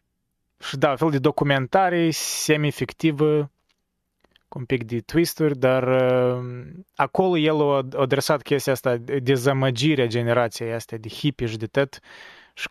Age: 20-39